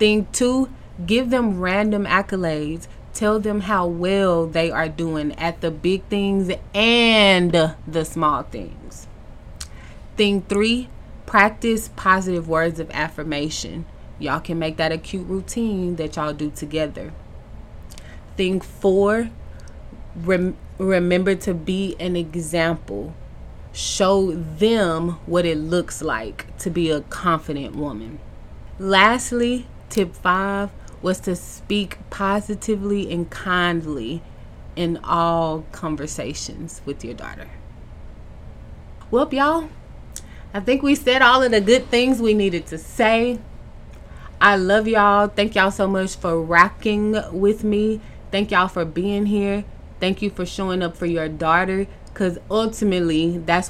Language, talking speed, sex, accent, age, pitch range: English, 125 wpm, female, American, 20-39, 165-205 Hz